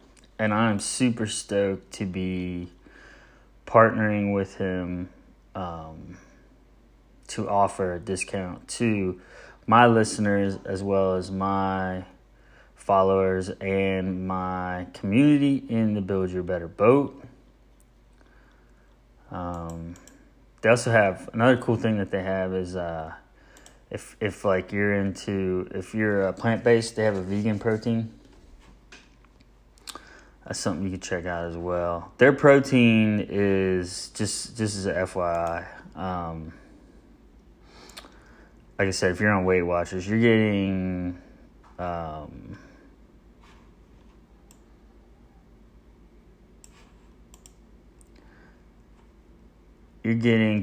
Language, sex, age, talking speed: English, male, 20-39, 105 wpm